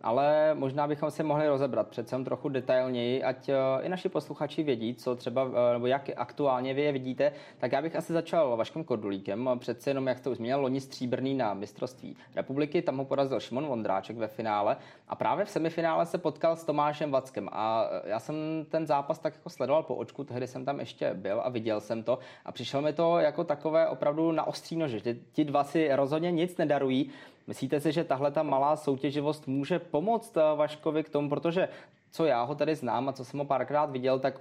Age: 20-39